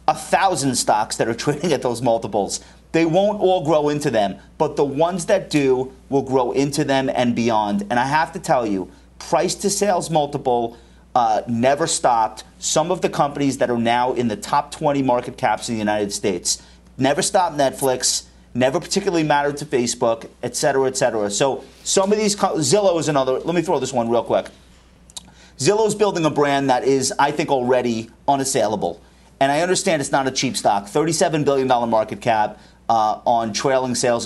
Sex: male